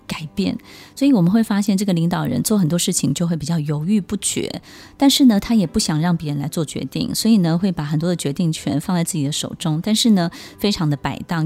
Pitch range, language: 155-210 Hz, Chinese